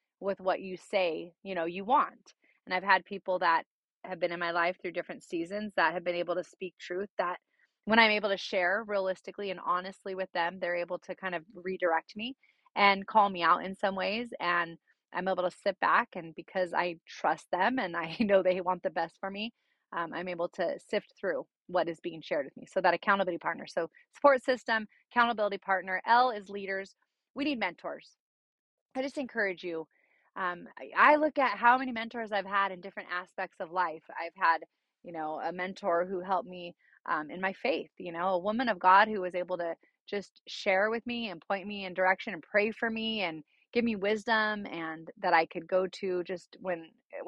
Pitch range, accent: 175-205 Hz, American